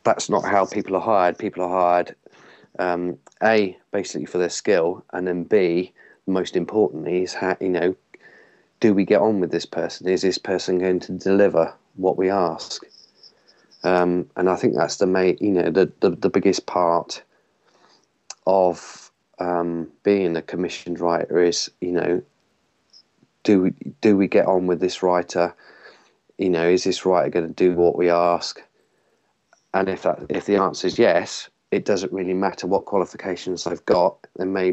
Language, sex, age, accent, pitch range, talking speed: English, male, 30-49, British, 85-95 Hz, 175 wpm